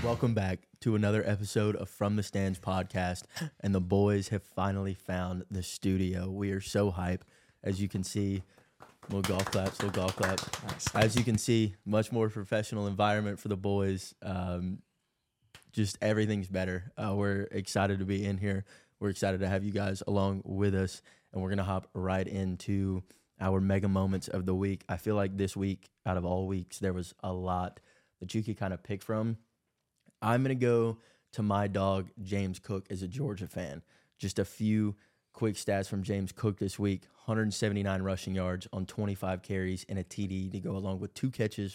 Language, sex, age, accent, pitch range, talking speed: English, male, 20-39, American, 95-105 Hz, 195 wpm